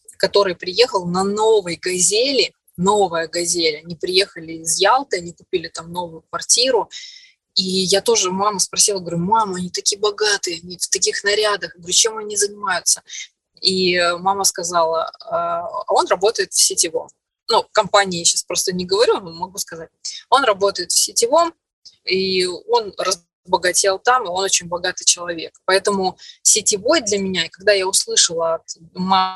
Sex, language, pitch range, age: female, Russian, 175-255 Hz, 20-39